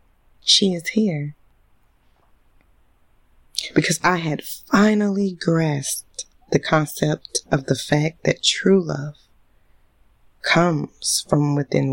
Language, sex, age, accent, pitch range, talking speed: English, female, 20-39, American, 115-170 Hz, 95 wpm